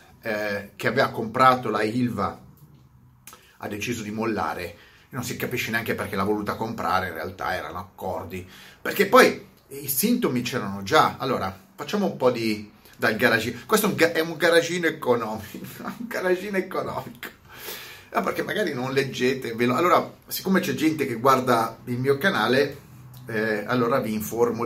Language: Italian